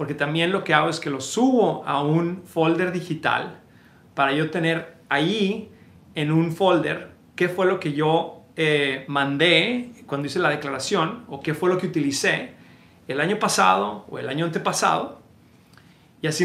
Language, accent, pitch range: Spanish, Mexican, 150-180 Hz